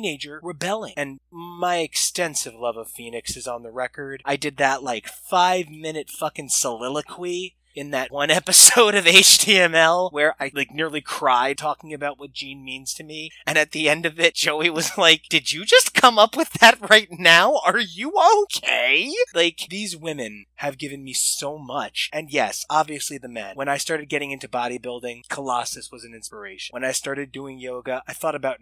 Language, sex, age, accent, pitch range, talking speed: English, male, 20-39, American, 130-165 Hz, 185 wpm